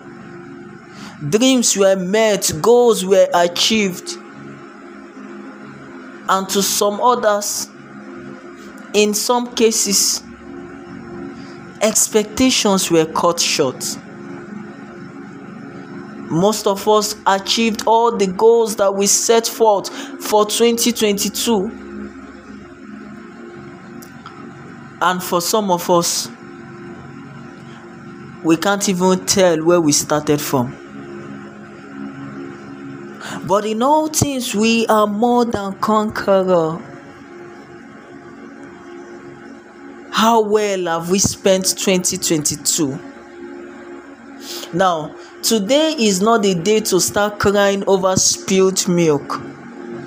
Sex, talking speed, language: male, 85 wpm, English